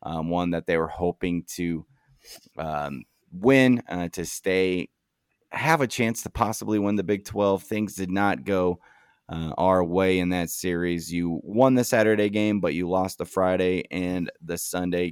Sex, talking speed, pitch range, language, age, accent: male, 175 wpm, 85-105 Hz, English, 30-49, American